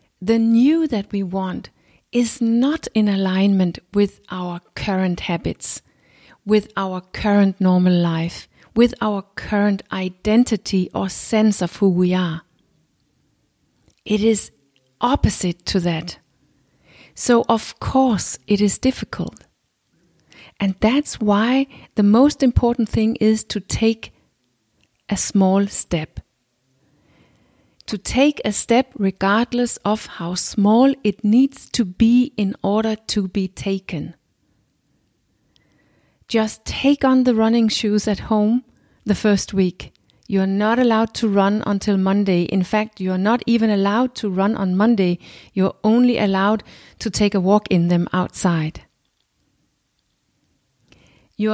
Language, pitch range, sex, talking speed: English, 185-225 Hz, female, 130 wpm